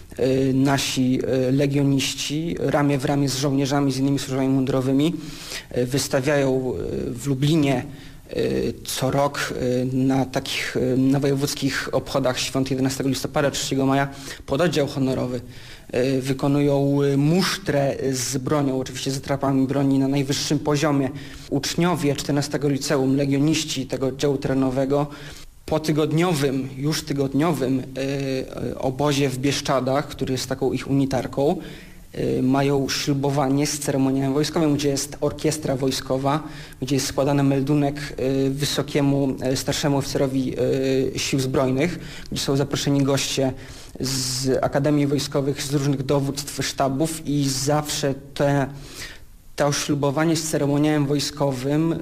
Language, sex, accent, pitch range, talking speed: Polish, male, native, 135-145 Hz, 115 wpm